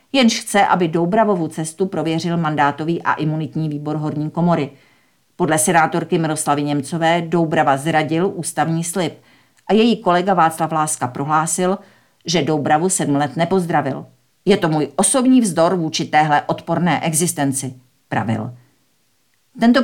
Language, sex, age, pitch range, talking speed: Czech, female, 50-69, 150-185 Hz, 125 wpm